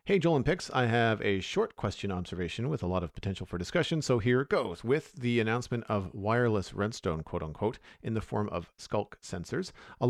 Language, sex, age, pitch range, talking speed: English, male, 40-59, 95-125 Hz, 215 wpm